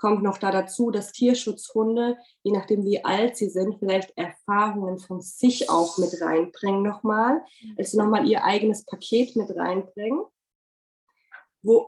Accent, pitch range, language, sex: German, 185-220 Hz, German, female